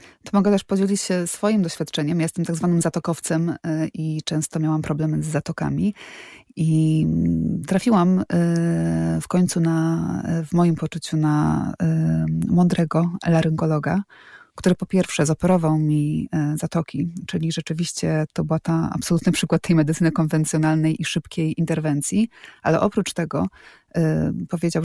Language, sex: Polish, female